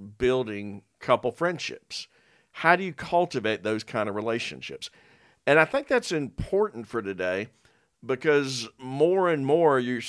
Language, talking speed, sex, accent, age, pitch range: English, 135 wpm, male, American, 50-69, 110-145 Hz